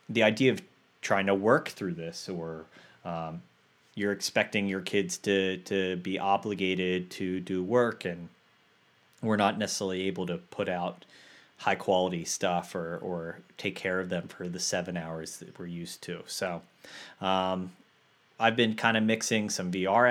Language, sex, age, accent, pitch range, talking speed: English, male, 30-49, American, 90-105 Hz, 160 wpm